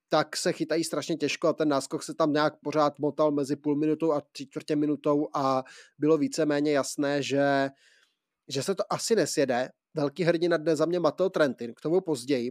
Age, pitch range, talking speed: 20-39, 140-155 Hz, 185 wpm